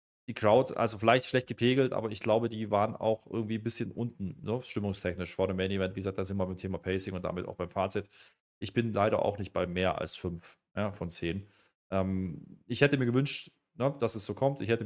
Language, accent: German, German